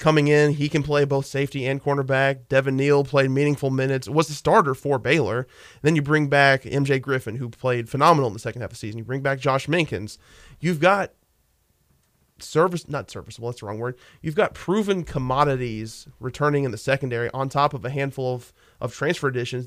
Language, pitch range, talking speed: English, 115-145 Hz, 200 wpm